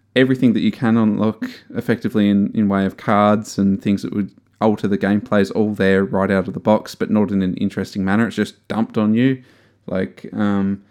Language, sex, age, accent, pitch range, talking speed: English, male, 20-39, Australian, 100-115 Hz, 215 wpm